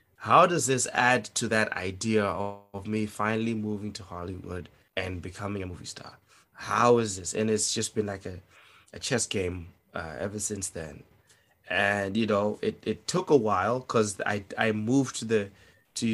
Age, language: 20-39, English